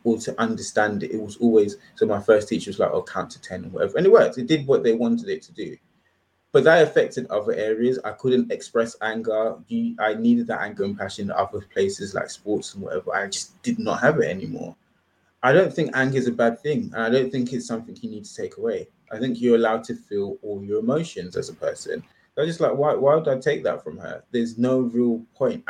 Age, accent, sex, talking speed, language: 20-39, British, male, 245 wpm, English